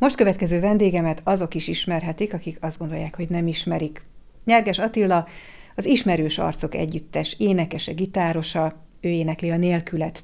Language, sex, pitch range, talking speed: Hungarian, female, 160-190 Hz, 135 wpm